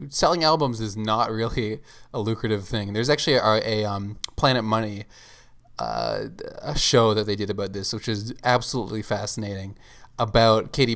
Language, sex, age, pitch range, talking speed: English, male, 20-39, 105-120 Hz, 155 wpm